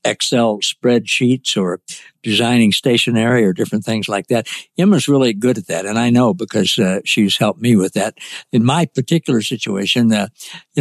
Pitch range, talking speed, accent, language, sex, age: 110-140 Hz, 170 wpm, American, English, male, 60-79